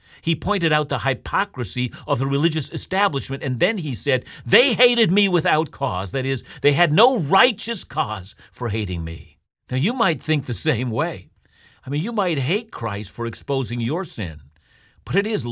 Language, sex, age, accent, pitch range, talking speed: English, male, 50-69, American, 115-165 Hz, 185 wpm